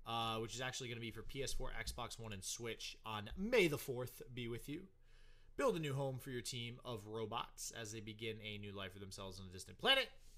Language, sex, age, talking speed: English, male, 20-39, 235 wpm